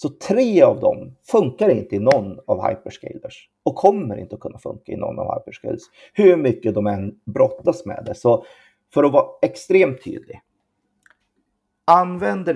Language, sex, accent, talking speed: Swedish, male, native, 160 wpm